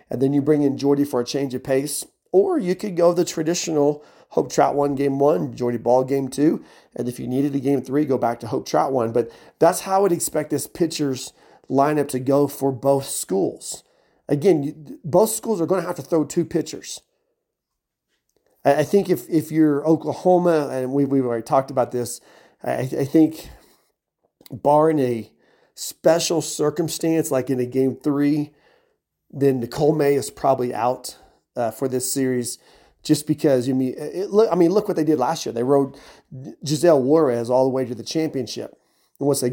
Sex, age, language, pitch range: male, 40-59, English, 130-160 Hz